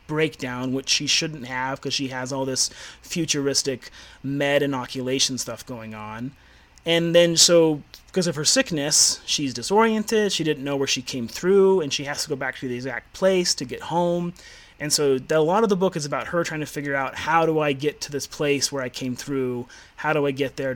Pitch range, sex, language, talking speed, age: 130-155 Hz, male, English, 215 wpm, 30-49